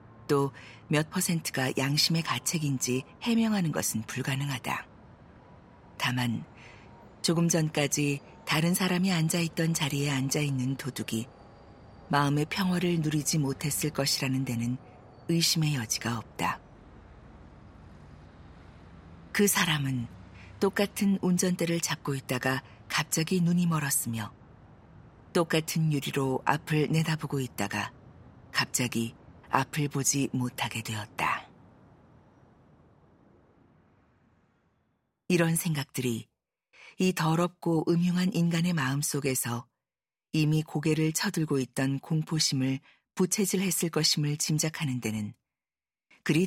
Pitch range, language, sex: 130-170 Hz, Korean, female